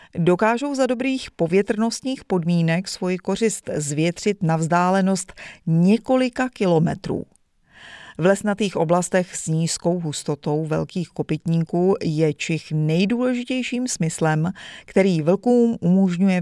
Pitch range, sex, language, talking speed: 165-220 Hz, female, Czech, 100 wpm